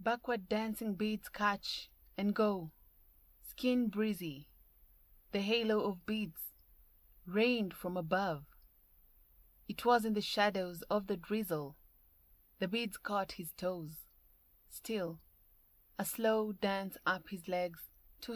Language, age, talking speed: English, 30-49, 115 wpm